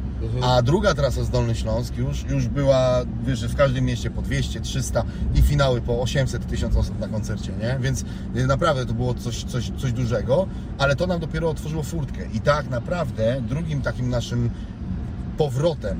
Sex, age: male, 40-59